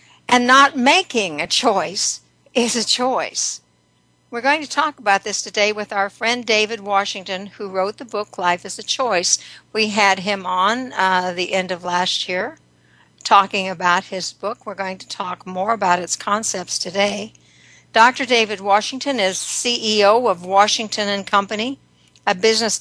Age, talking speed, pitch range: 60-79, 165 wpm, 185-225 Hz